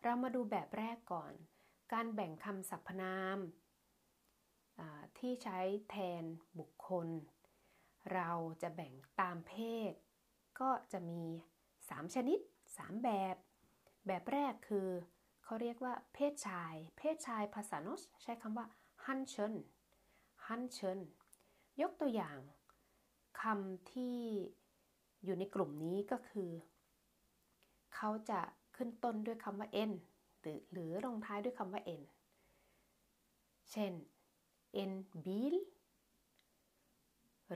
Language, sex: Thai, female